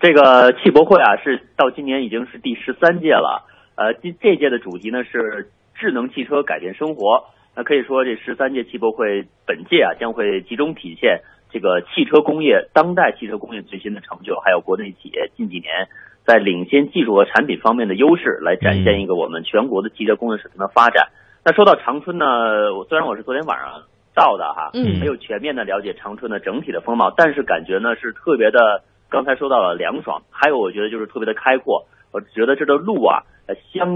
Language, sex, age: Chinese, male, 30-49